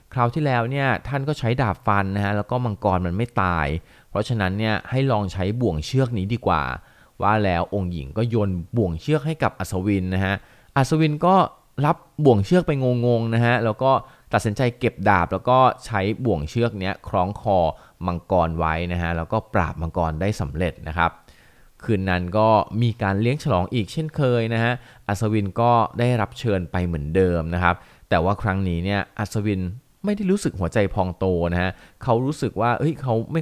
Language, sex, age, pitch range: Thai, male, 20-39, 90-120 Hz